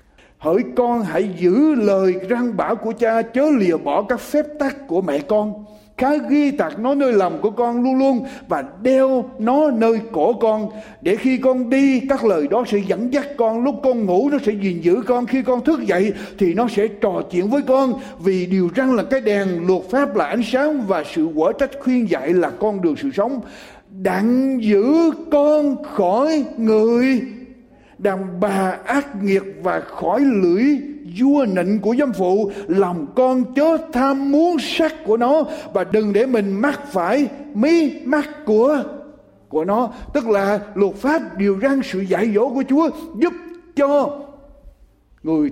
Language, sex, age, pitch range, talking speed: Vietnamese, male, 60-79, 200-280 Hz, 180 wpm